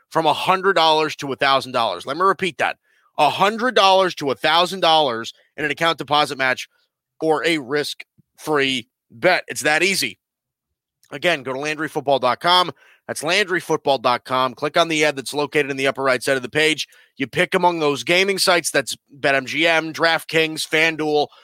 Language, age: English, 30-49